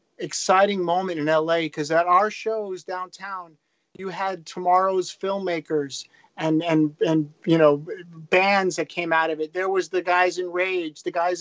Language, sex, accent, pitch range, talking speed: English, male, American, 165-205 Hz, 170 wpm